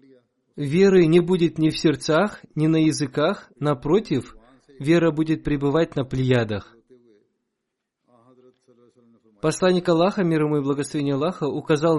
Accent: native